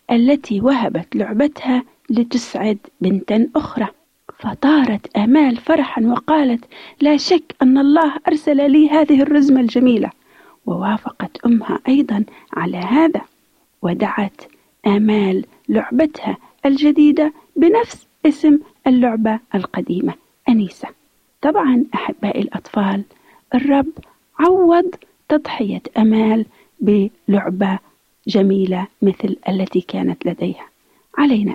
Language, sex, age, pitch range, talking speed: Arabic, female, 40-59, 210-290 Hz, 90 wpm